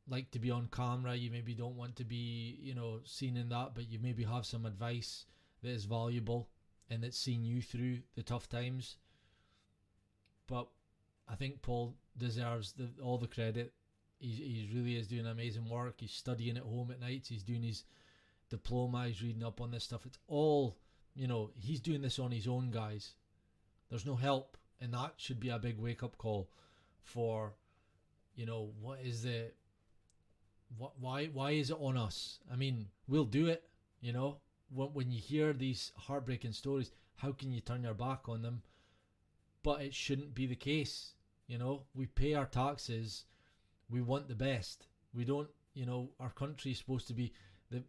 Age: 20-39